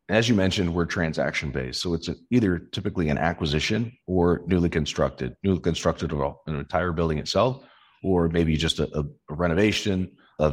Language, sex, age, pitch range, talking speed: English, male, 40-59, 75-90 Hz, 155 wpm